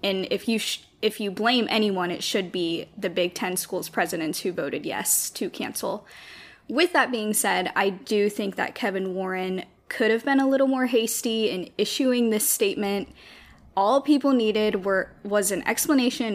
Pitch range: 190-225 Hz